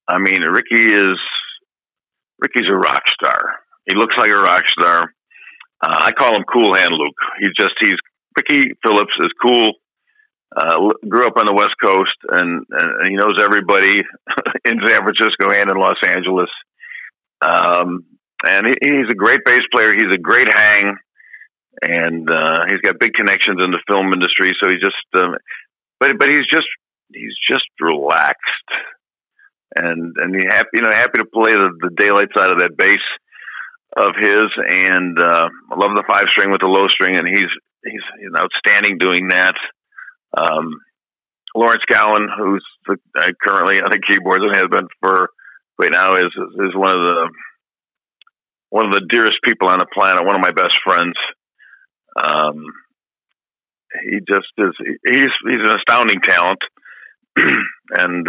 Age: 50-69